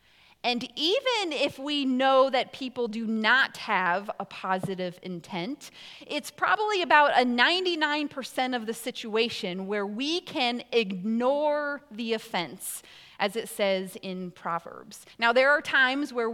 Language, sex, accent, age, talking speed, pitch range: English, female, American, 30-49, 135 wpm, 200-255 Hz